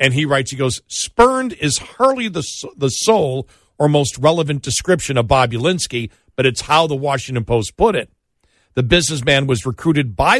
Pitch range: 125-170 Hz